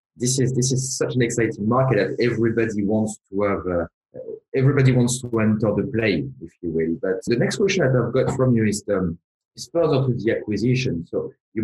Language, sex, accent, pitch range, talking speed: English, male, French, 100-130 Hz, 215 wpm